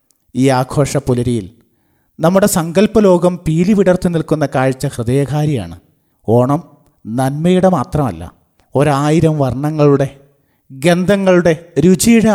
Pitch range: 130-170 Hz